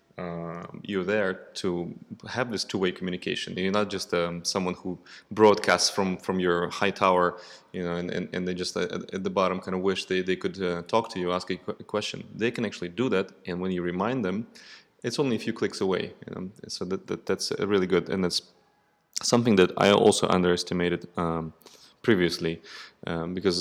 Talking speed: 205 wpm